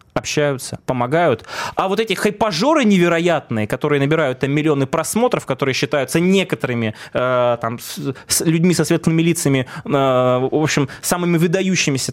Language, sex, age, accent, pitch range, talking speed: Russian, male, 20-39, native, 130-180 Hz, 140 wpm